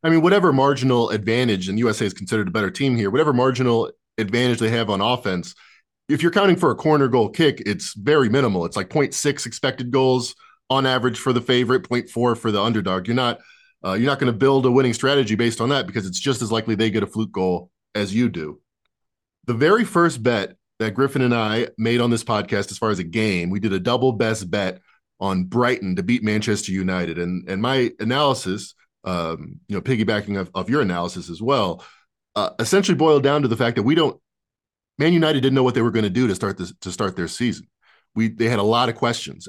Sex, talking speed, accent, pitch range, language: male, 225 wpm, American, 110-140 Hz, English